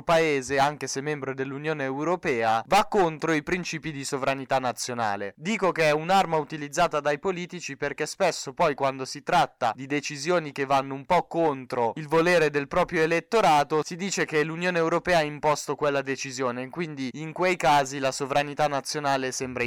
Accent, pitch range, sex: native, 125-155 Hz, male